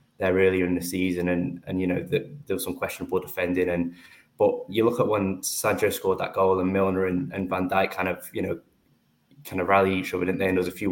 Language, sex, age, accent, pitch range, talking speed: English, male, 10-29, British, 90-110 Hz, 255 wpm